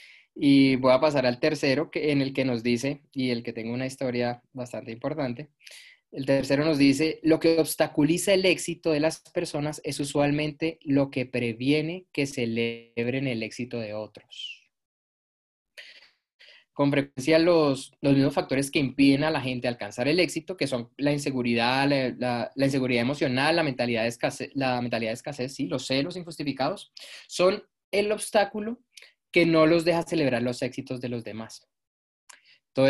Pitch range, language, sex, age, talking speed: 125-160 Hz, Spanish, male, 20-39, 170 wpm